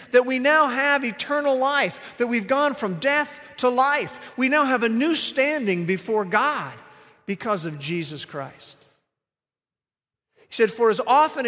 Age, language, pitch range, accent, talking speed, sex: 50-69, English, 165-265 Hz, American, 155 wpm, male